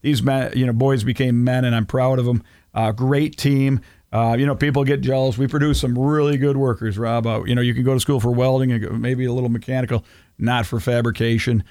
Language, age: Japanese, 50-69